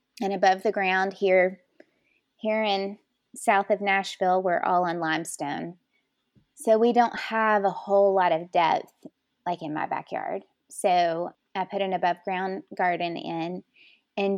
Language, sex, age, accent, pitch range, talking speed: English, female, 20-39, American, 180-220 Hz, 150 wpm